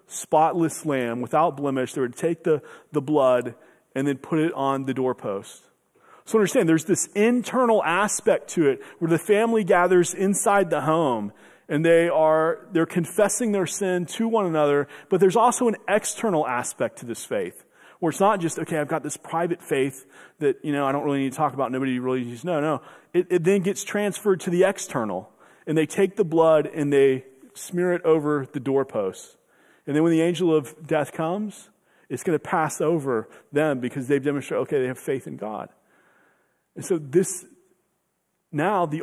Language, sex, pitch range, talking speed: English, male, 150-190 Hz, 190 wpm